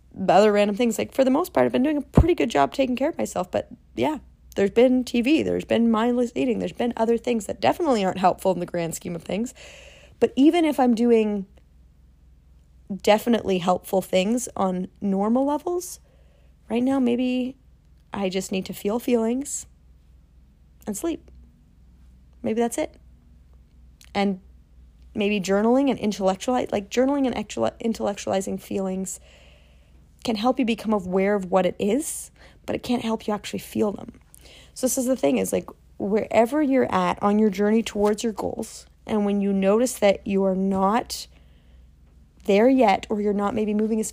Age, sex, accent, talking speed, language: 30-49, female, American, 170 wpm, English